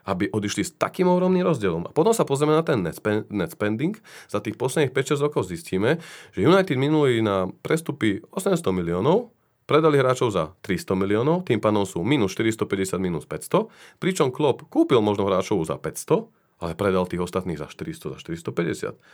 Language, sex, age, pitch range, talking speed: Slovak, male, 30-49, 95-130 Hz, 170 wpm